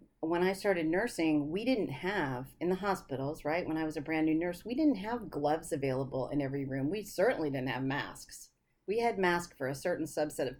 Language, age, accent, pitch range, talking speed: English, 40-59, American, 145-190 Hz, 220 wpm